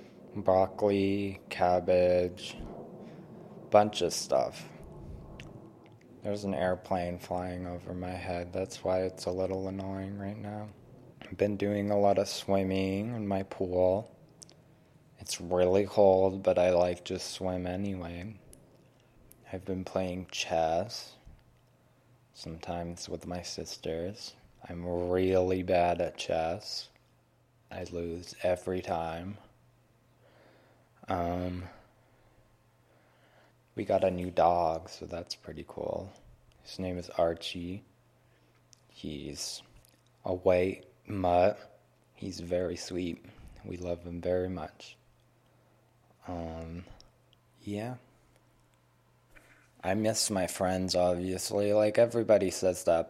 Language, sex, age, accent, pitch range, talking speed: English, male, 20-39, American, 90-100 Hz, 105 wpm